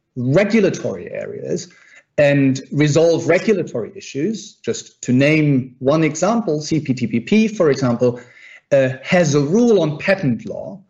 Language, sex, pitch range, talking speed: English, male, 135-190 Hz, 115 wpm